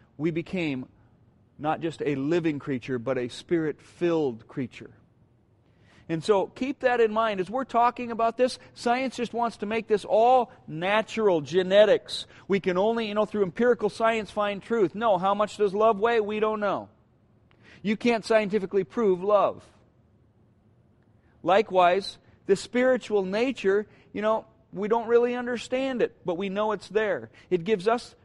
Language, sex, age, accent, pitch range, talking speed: English, male, 40-59, American, 165-220 Hz, 155 wpm